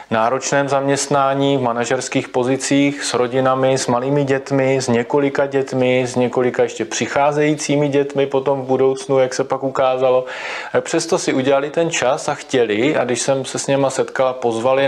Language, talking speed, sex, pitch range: Slovak, 160 wpm, male, 120-140 Hz